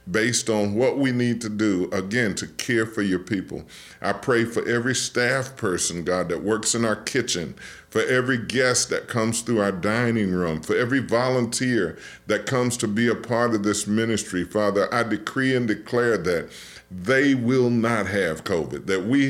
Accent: American